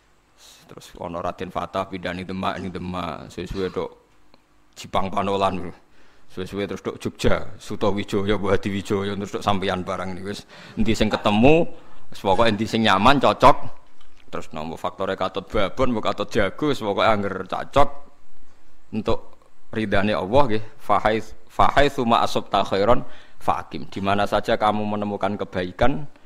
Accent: native